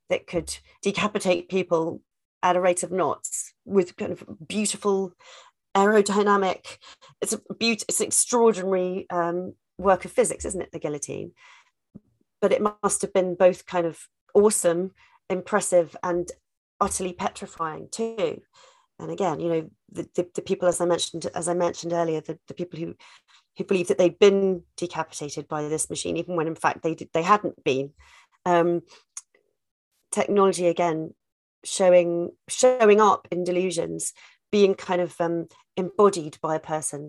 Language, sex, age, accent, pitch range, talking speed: English, female, 40-59, British, 170-205 Hz, 155 wpm